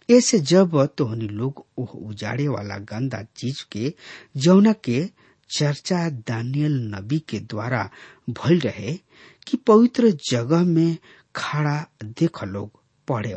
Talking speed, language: 115 wpm, English